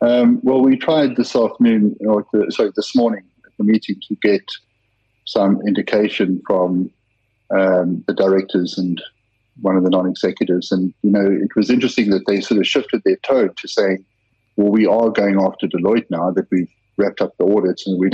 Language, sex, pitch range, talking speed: English, male, 95-110 Hz, 185 wpm